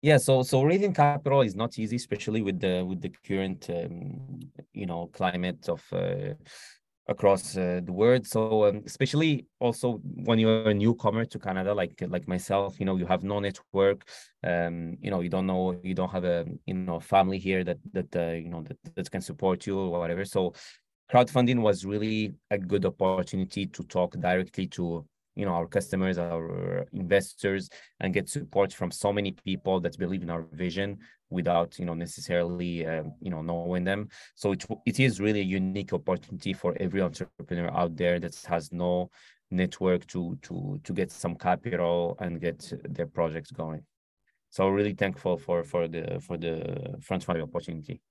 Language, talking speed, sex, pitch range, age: English, 180 wpm, male, 85-105 Hz, 20-39